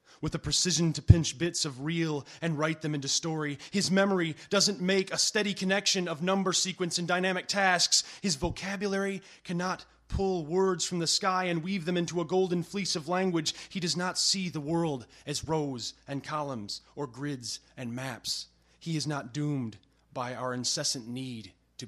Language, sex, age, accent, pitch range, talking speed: English, male, 30-49, American, 130-180 Hz, 180 wpm